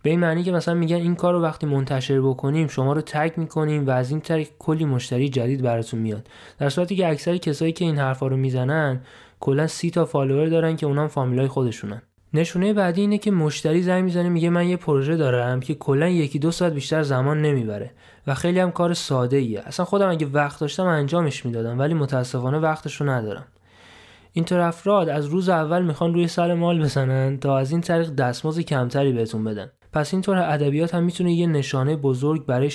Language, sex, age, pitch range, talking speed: Persian, male, 20-39, 135-170 Hz, 190 wpm